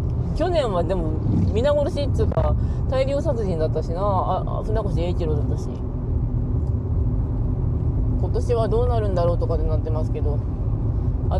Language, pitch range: Japanese, 75-120 Hz